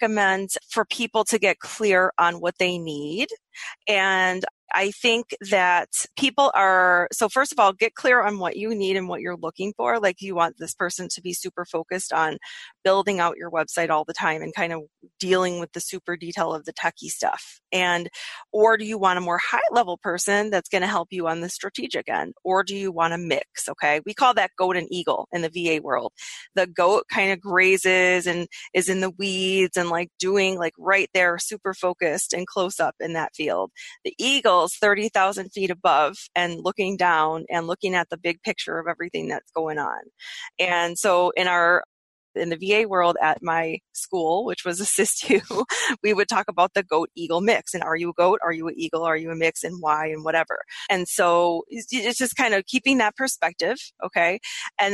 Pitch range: 170-205 Hz